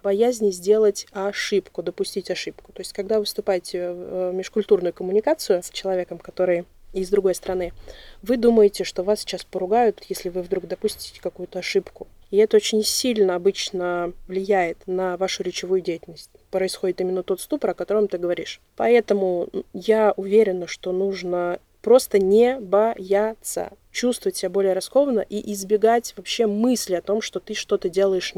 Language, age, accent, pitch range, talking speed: Russian, 20-39, native, 185-215 Hz, 150 wpm